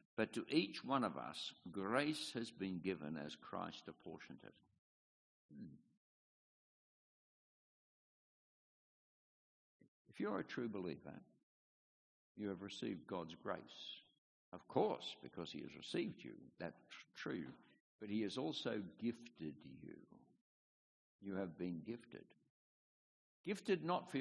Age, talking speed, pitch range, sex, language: 60-79, 115 wpm, 80-120 Hz, male, English